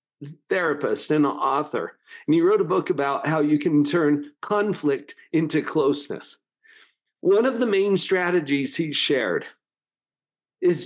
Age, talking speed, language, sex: 50-69, 135 wpm, English, male